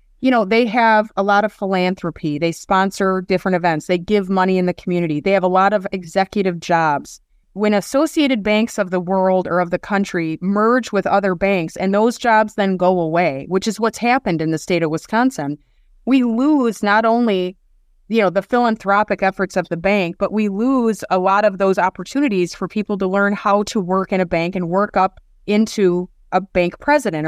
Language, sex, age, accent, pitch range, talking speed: English, female, 30-49, American, 180-215 Hz, 200 wpm